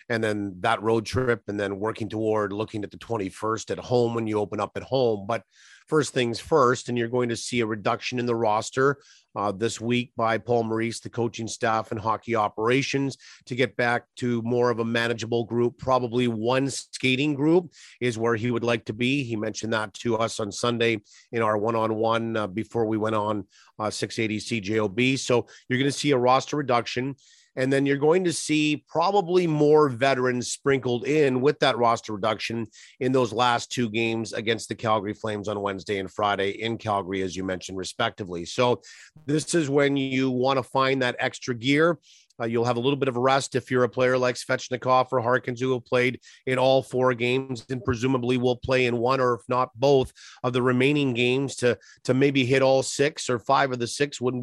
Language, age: English, 40-59